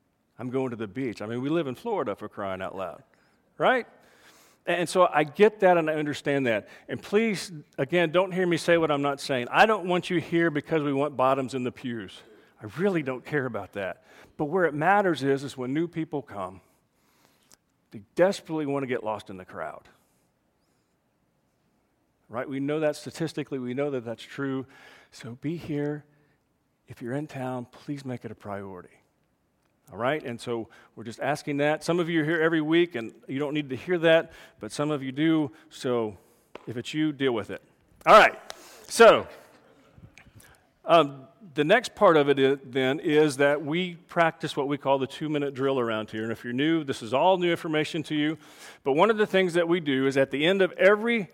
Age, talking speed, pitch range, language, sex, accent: 40-59, 205 wpm, 125-165 Hz, English, male, American